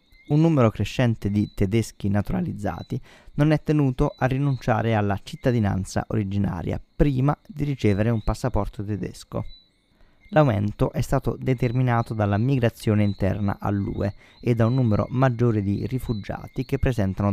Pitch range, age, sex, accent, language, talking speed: 100-130 Hz, 20-39, male, native, Italian, 130 wpm